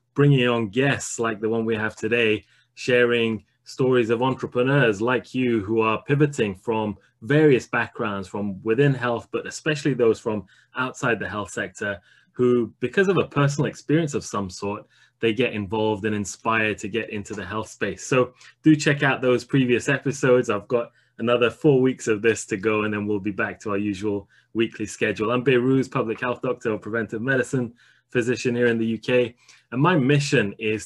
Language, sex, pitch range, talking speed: English, male, 110-130 Hz, 185 wpm